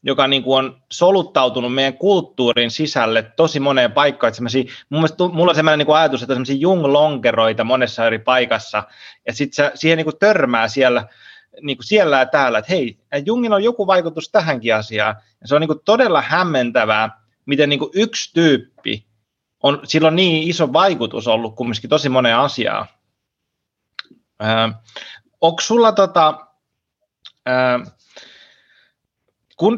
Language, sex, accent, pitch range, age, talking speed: Finnish, male, native, 125-160 Hz, 30-49, 110 wpm